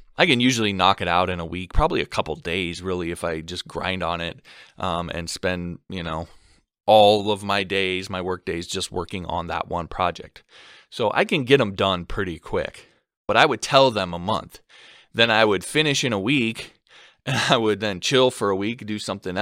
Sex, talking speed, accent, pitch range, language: male, 215 wpm, American, 95-130 Hz, English